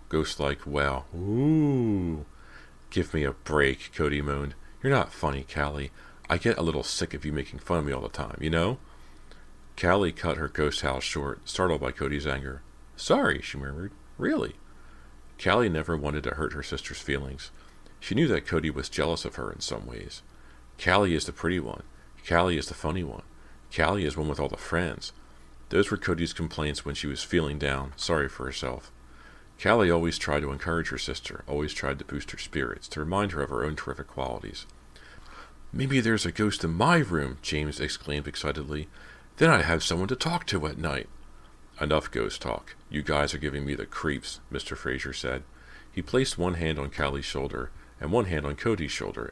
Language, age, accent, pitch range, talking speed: English, 40-59, American, 65-80 Hz, 190 wpm